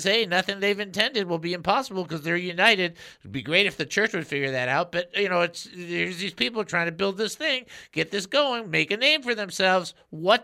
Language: English